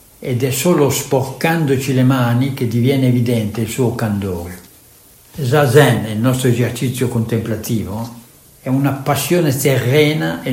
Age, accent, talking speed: 60-79, native, 125 wpm